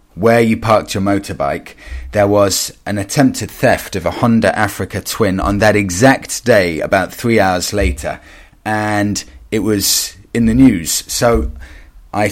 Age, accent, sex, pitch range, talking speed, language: 30-49, British, male, 95-120 Hz, 150 wpm, English